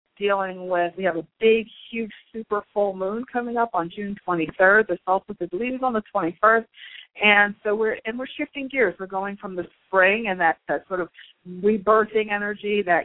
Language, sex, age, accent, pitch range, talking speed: English, female, 50-69, American, 175-220 Hz, 200 wpm